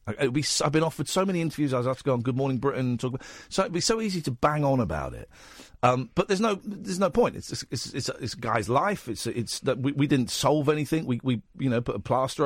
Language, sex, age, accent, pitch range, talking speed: English, male, 50-69, British, 110-150 Hz, 290 wpm